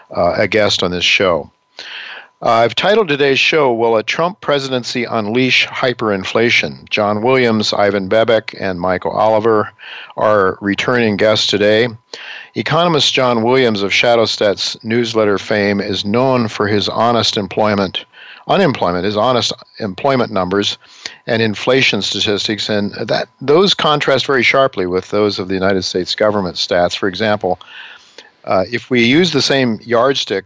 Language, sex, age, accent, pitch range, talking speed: English, male, 50-69, American, 100-120 Hz, 140 wpm